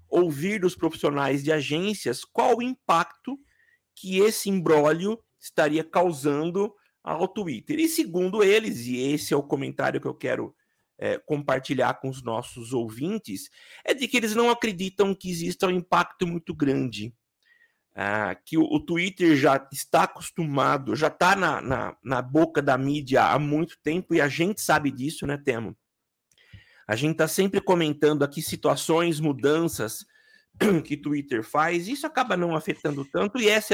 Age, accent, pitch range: 50-69, Brazilian, 145-205 Hz